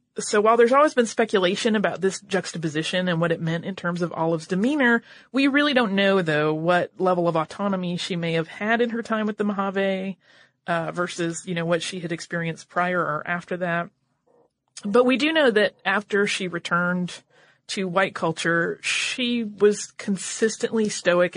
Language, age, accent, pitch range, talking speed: English, 30-49, American, 175-215 Hz, 180 wpm